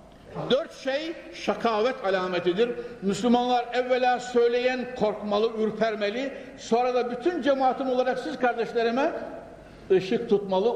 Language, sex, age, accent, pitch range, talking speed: Turkish, male, 60-79, native, 170-235 Hz, 100 wpm